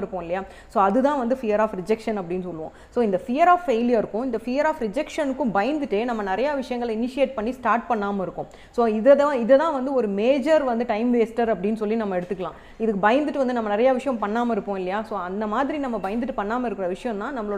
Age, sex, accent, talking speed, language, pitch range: 30-49, female, native, 50 wpm, Tamil, 200-260 Hz